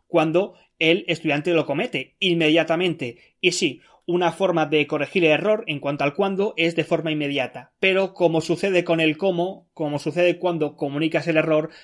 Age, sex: 20-39, male